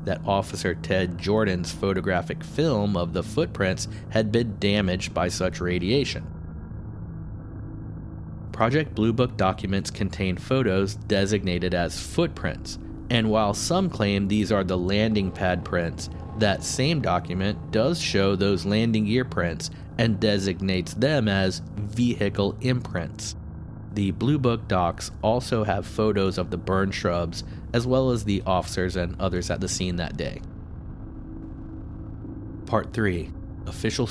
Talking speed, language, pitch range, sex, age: 130 wpm, English, 90-110 Hz, male, 30-49